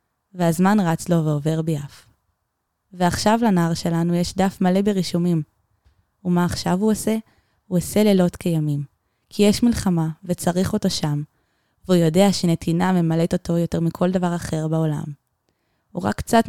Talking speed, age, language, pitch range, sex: 140 wpm, 20-39, Hebrew, 160-195 Hz, female